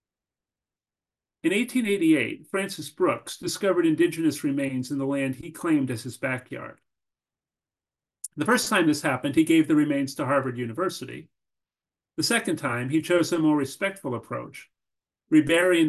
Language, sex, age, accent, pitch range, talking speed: English, male, 40-59, American, 135-185 Hz, 140 wpm